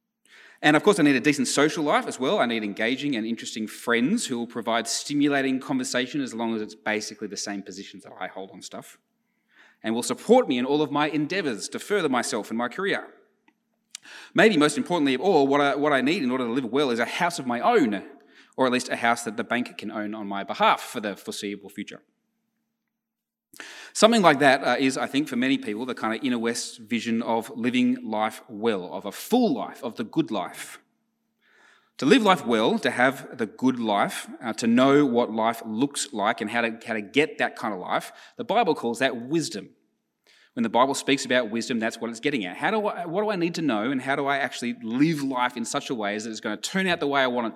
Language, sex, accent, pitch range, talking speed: English, male, Australian, 110-155 Hz, 235 wpm